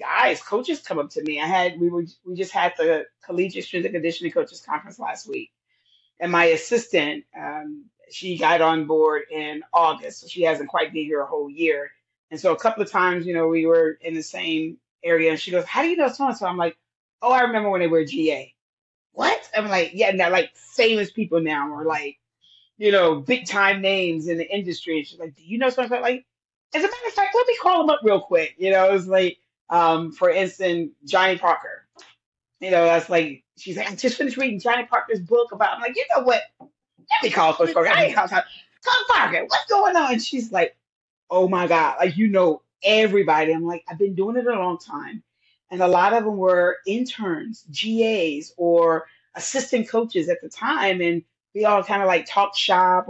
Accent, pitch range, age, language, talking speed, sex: American, 165-235 Hz, 30-49, English, 220 wpm, female